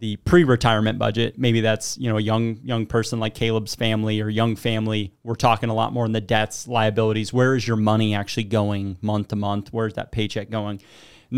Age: 30-49